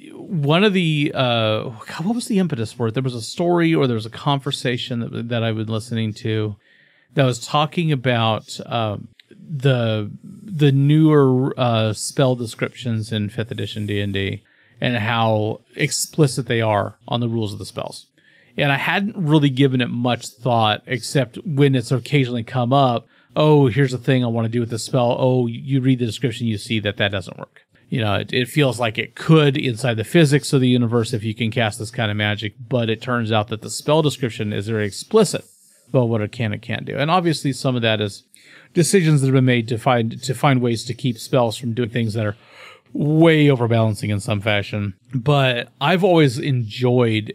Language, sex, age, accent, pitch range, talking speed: English, male, 40-59, American, 110-140 Hz, 205 wpm